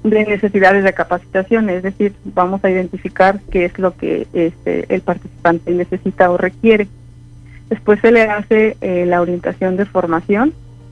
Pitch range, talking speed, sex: 180-215 Hz, 155 wpm, female